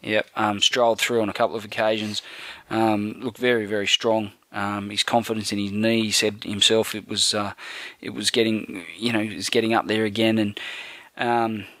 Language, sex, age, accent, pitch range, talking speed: English, male, 20-39, Australian, 105-120 Hz, 200 wpm